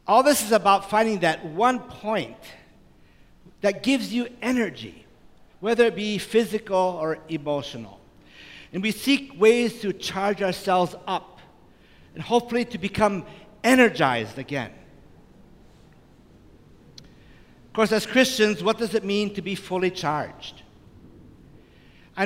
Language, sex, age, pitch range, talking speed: English, male, 50-69, 145-200 Hz, 120 wpm